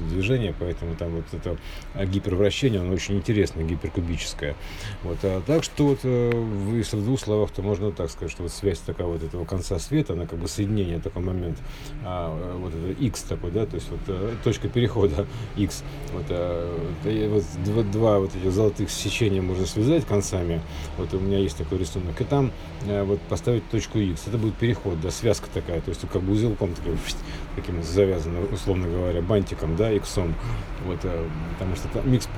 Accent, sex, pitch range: native, male, 85-110 Hz